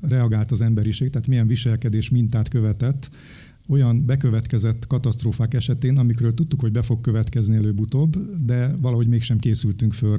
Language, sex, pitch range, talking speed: Hungarian, male, 110-130 Hz, 140 wpm